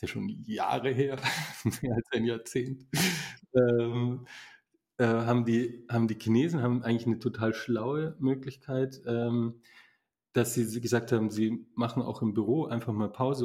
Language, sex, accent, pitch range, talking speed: German, male, German, 115-130 Hz, 145 wpm